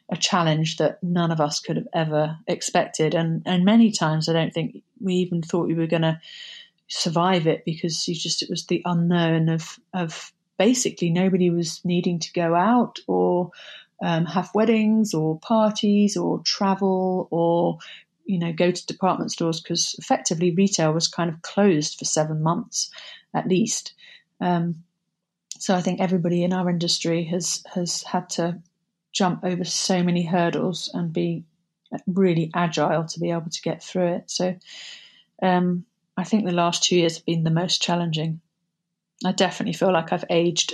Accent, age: British, 30-49